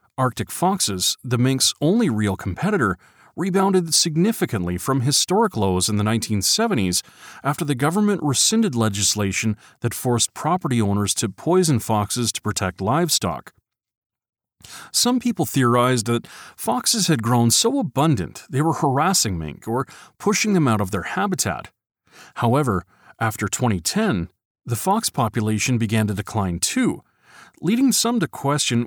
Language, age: English, 40-59